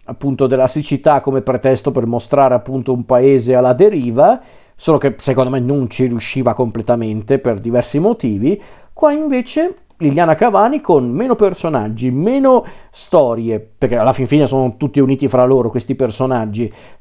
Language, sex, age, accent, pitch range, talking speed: Italian, male, 50-69, native, 125-150 Hz, 150 wpm